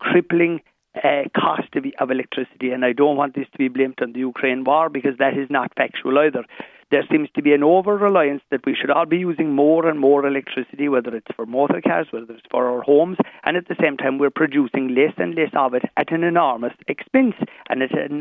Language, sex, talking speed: English, male, 225 wpm